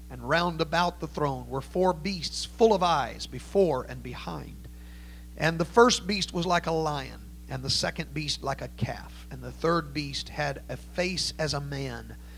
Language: English